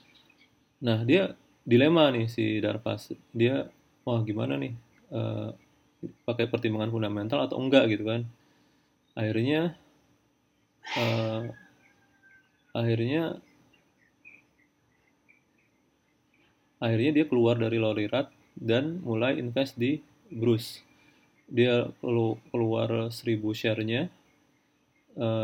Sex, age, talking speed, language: male, 30-49, 85 wpm, Indonesian